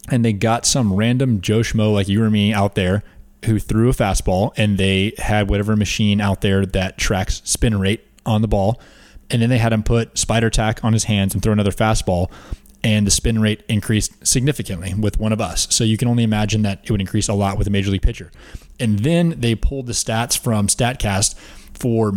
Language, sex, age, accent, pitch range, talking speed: English, male, 20-39, American, 100-120 Hz, 220 wpm